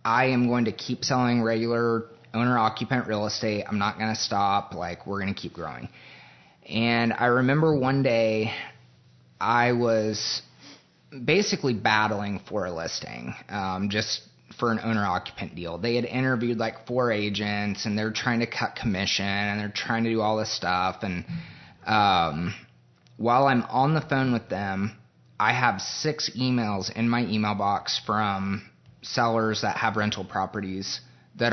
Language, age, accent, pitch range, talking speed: English, 30-49, American, 105-125 Hz, 160 wpm